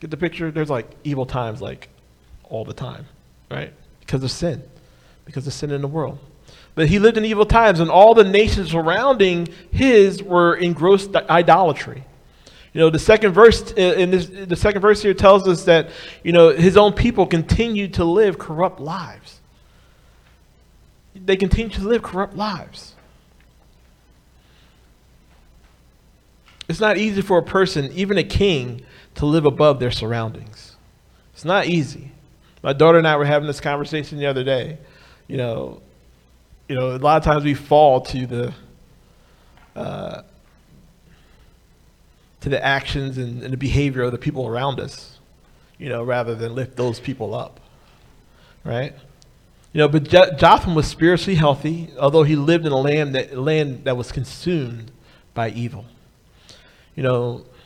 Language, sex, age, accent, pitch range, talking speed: English, male, 40-59, American, 120-175 Hz, 155 wpm